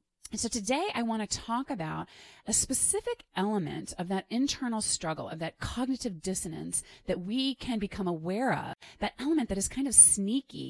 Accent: American